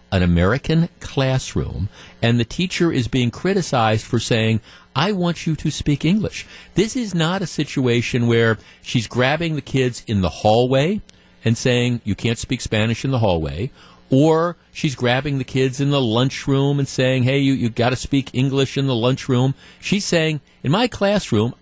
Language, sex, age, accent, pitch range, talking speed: English, male, 50-69, American, 110-150 Hz, 175 wpm